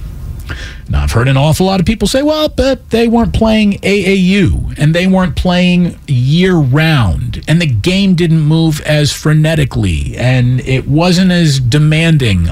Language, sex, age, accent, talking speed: English, male, 40-59, American, 155 wpm